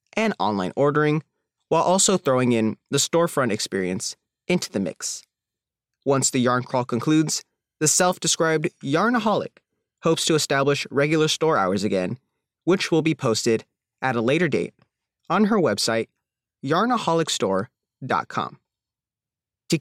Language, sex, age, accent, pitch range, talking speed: English, male, 30-49, American, 120-185 Hz, 125 wpm